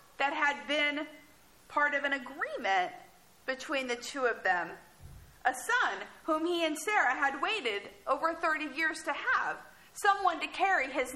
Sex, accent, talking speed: female, American, 155 wpm